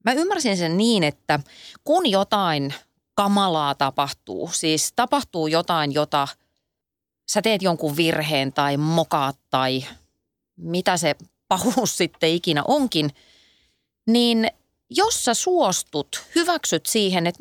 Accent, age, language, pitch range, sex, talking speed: native, 30-49, Finnish, 155-210 Hz, female, 115 wpm